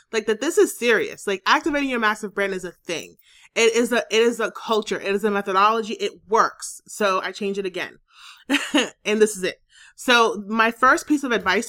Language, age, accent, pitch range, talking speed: English, 30-49, American, 205-260 Hz, 210 wpm